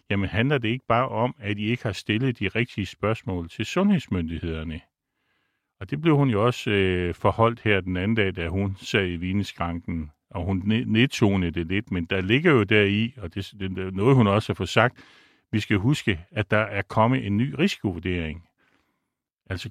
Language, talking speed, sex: Danish, 190 wpm, male